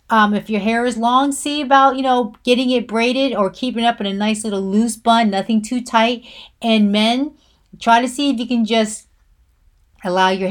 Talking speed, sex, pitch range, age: 210 wpm, female, 200-260 Hz, 30-49